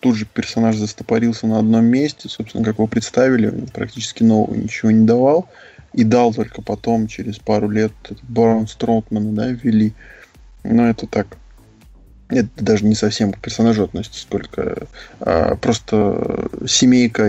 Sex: male